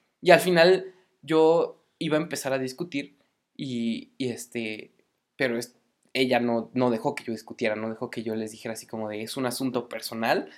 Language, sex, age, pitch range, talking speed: Spanish, male, 20-39, 120-145 Hz, 195 wpm